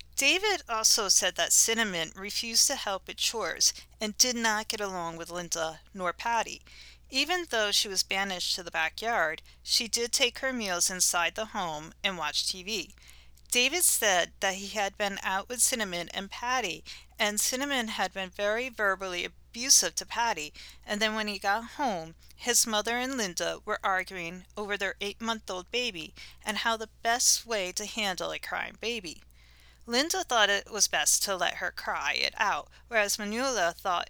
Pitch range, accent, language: 185-240 Hz, American, English